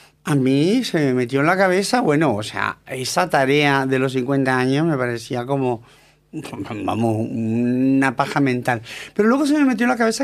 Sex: male